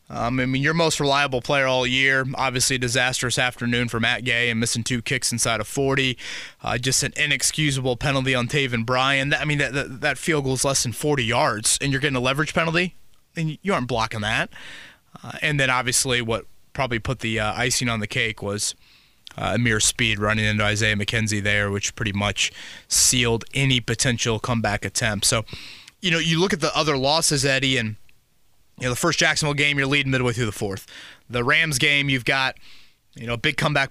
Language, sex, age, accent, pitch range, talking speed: English, male, 20-39, American, 120-150 Hz, 210 wpm